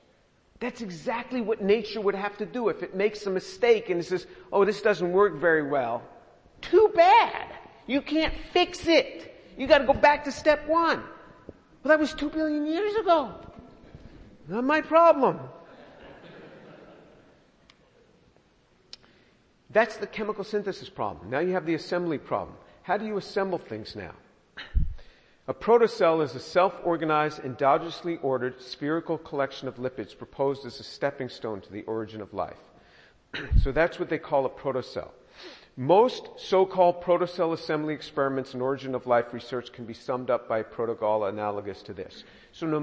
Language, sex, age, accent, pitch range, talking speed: English, male, 50-69, American, 150-225 Hz, 160 wpm